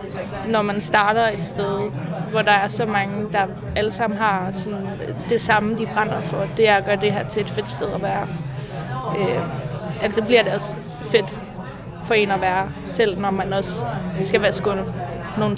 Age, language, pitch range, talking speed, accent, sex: 20-39, Danish, 195-225 Hz, 195 wpm, native, female